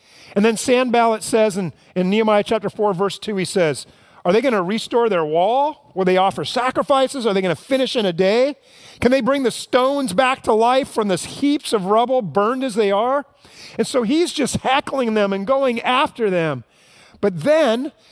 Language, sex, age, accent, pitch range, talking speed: English, male, 40-59, American, 200-265 Hz, 200 wpm